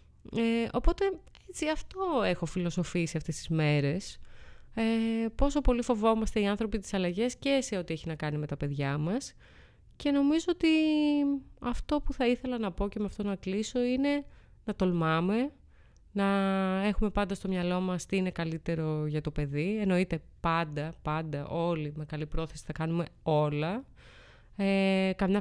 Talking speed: 160 wpm